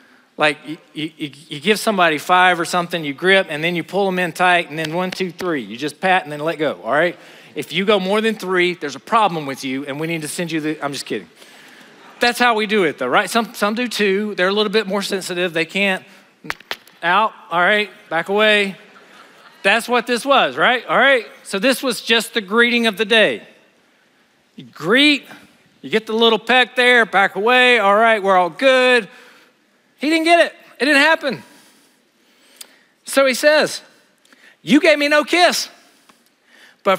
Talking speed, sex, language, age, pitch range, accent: 200 wpm, male, English, 40-59, 155-235 Hz, American